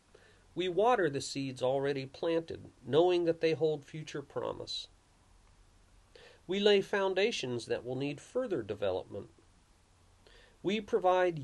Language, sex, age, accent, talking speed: English, male, 40-59, American, 115 wpm